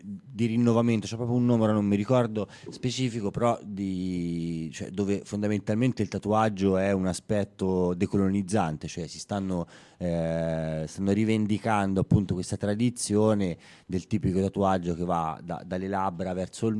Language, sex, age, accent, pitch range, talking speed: Italian, male, 30-49, native, 90-110 Hz, 145 wpm